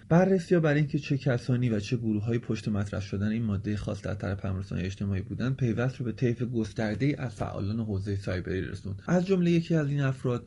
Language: Persian